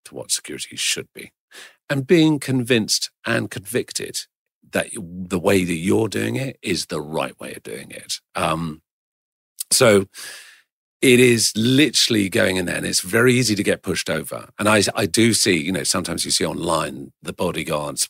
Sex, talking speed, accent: male, 175 wpm, British